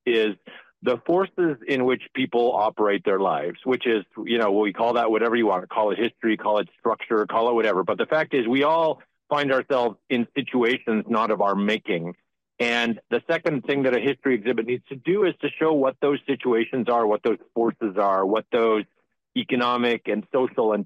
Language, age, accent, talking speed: English, 50-69, American, 200 wpm